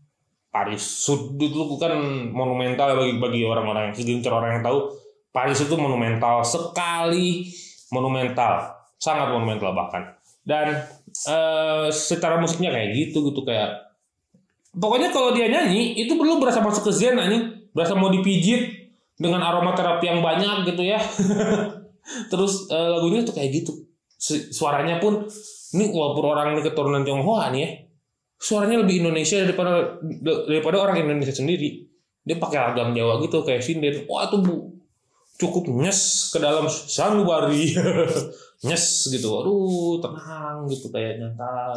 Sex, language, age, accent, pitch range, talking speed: male, Indonesian, 20-39, native, 135-190 Hz, 135 wpm